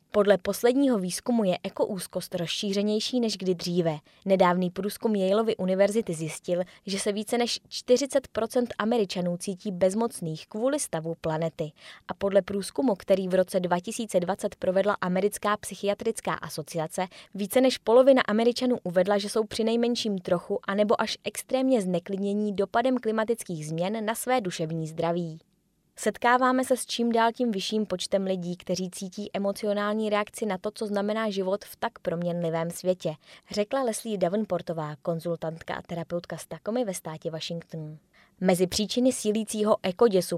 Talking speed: 140 wpm